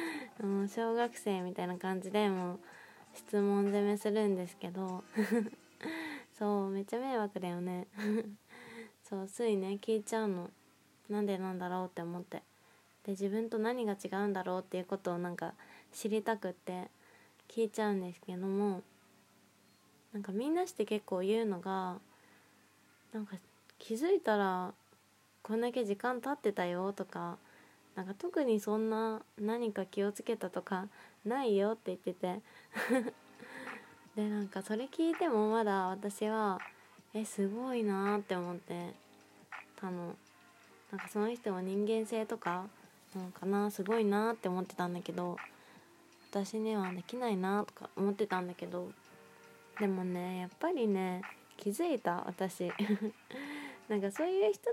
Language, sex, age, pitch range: Japanese, female, 20-39, 185-225 Hz